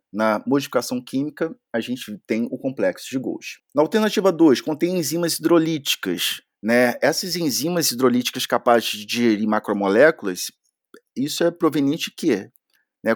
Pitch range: 120-170 Hz